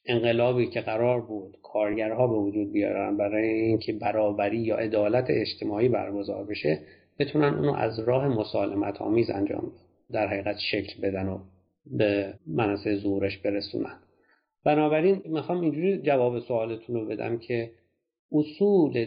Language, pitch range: Persian, 110-140 Hz